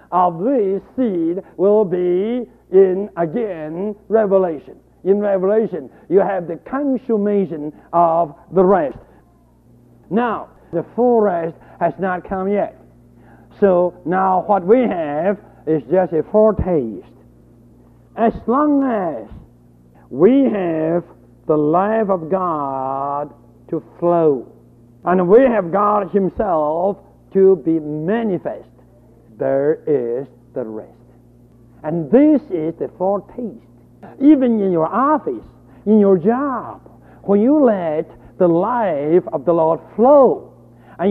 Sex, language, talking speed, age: male, English, 115 wpm, 60-79